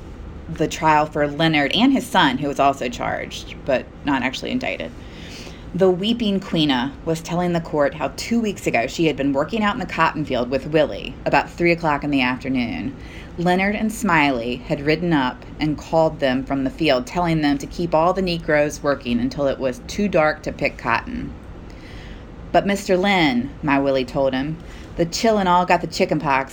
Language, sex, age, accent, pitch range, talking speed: English, female, 30-49, American, 140-190 Hz, 195 wpm